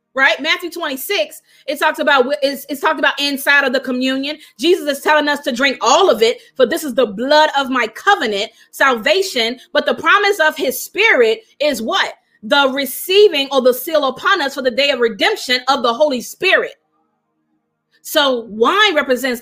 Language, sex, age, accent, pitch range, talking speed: English, female, 30-49, American, 230-310 Hz, 180 wpm